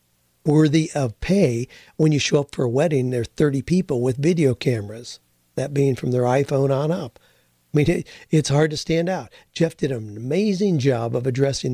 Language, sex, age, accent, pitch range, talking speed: English, male, 50-69, American, 125-150 Hz, 195 wpm